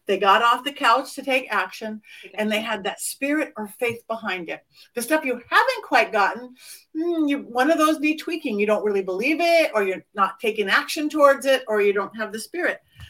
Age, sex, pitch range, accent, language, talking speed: 50-69, female, 205-265 Hz, American, English, 210 wpm